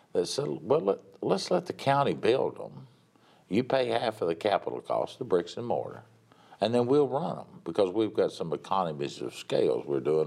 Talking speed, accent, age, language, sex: 205 wpm, American, 60-79, English, male